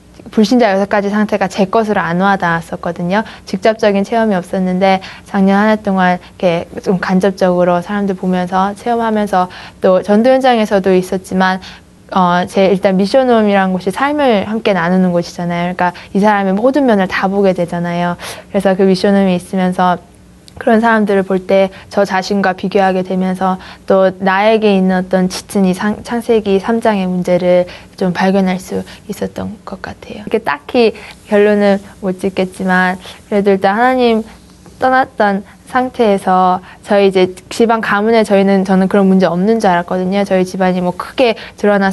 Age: 20-39